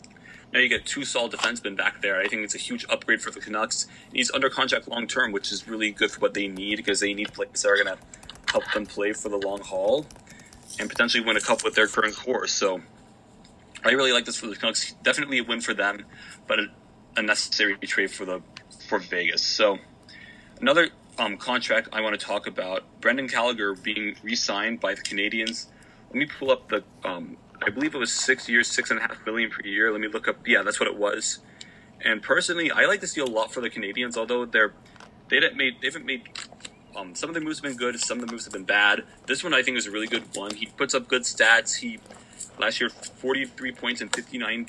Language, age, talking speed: English, 20-39, 230 wpm